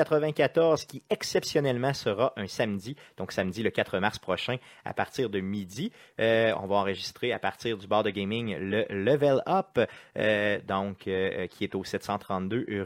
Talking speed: 170 wpm